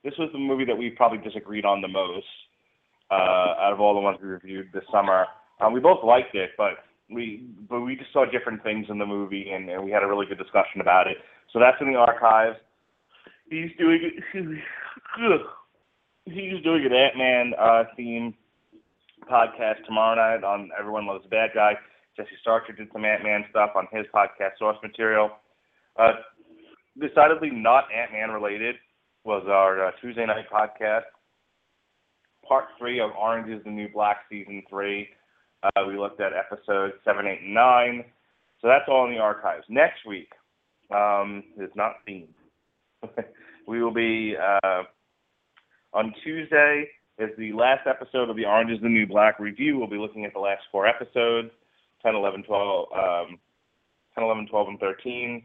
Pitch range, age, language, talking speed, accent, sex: 100-120 Hz, 20-39, English, 160 wpm, American, male